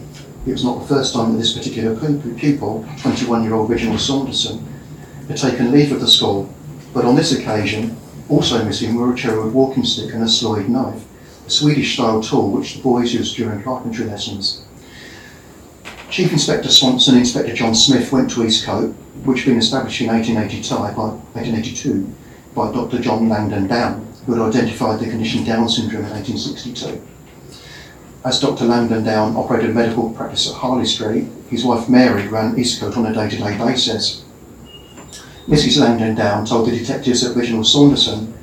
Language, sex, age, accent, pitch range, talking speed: English, male, 40-59, British, 110-130 Hz, 165 wpm